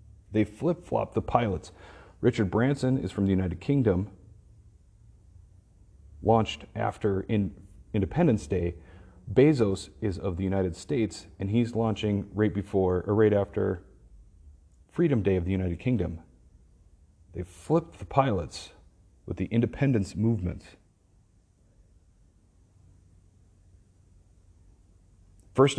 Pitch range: 90-120 Hz